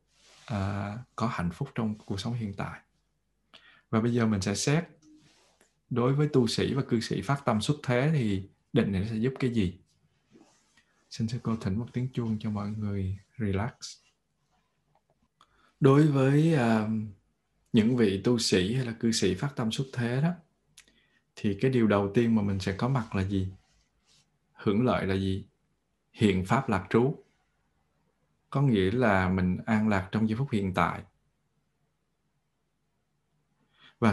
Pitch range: 100-125 Hz